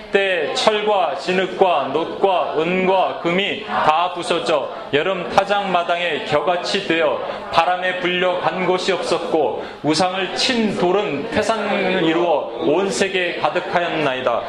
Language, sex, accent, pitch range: Korean, male, native, 155-200 Hz